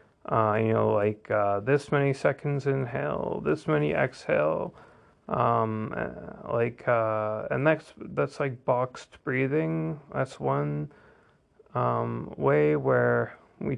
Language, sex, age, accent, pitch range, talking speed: English, male, 30-49, American, 115-145 Hz, 120 wpm